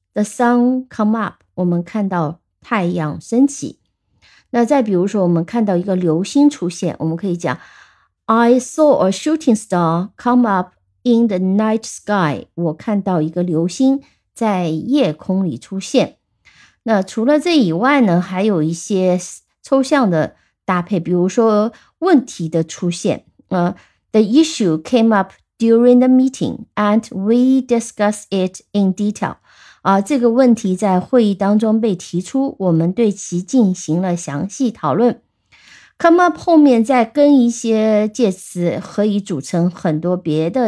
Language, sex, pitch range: Chinese, female, 175-245 Hz